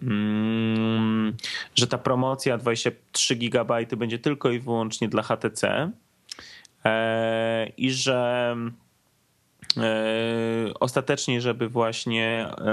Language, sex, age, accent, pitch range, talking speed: Polish, male, 20-39, native, 110-125 Hz, 75 wpm